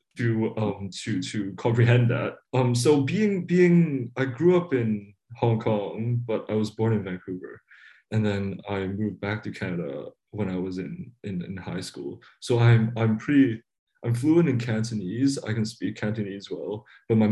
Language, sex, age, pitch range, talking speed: English, male, 20-39, 105-130 Hz, 180 wpm